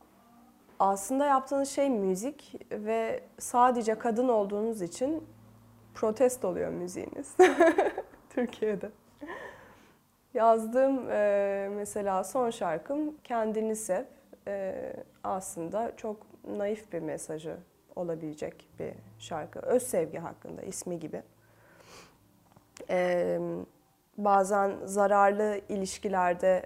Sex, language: female, Turkish